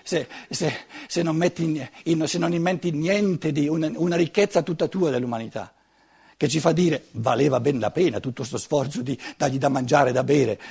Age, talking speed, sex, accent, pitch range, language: 60-79, 200 wpm, male, native, 135-185 Hz, Italian